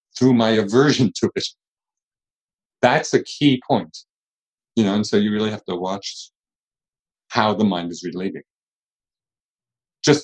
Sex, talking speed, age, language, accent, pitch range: male, 140 wpm, 50-69, English, American, 95-135 Hz